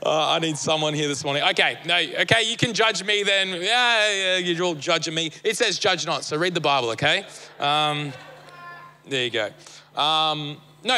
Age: 20-39